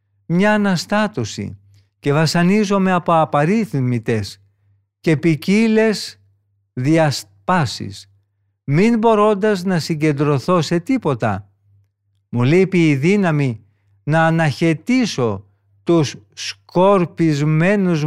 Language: Greek